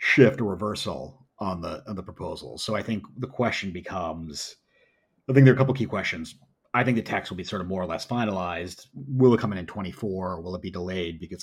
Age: 30-49